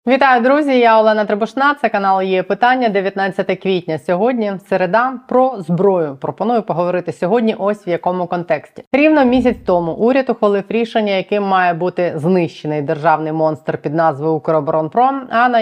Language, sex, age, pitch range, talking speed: Ukrainian, female, 30-49, 160-205 Hz, 150 wpm